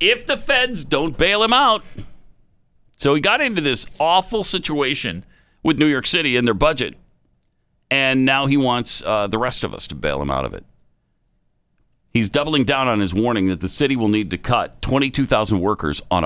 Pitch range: 90-140 Hz